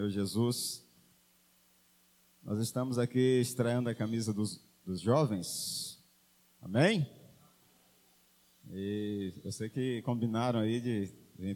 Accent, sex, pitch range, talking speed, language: Brazilian, male, 100-135 Hz, 100 wpm, Portuguese